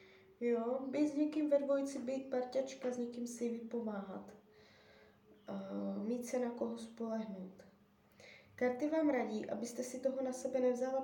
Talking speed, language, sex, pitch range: 140 wpm, Czech, female, 210-255 Hz